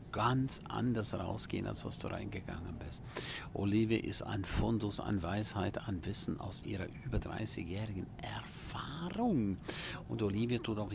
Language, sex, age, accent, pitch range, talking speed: German, male, 50-69, German, 105-125 Hz, 145 wpm